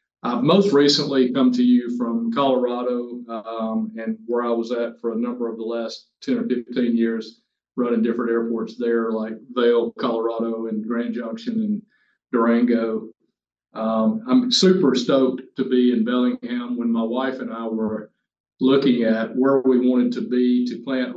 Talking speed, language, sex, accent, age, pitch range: 165 wpm, English, male, American, 40-59, 115-135 Hz